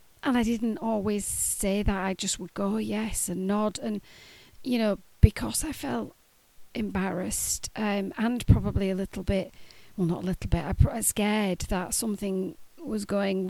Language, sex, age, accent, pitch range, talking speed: English, female, 40-59, British, 185-215 Hz, 170 wpm